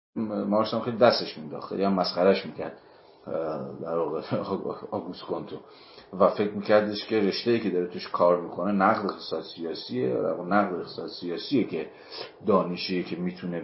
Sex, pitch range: male, 90-105 Hz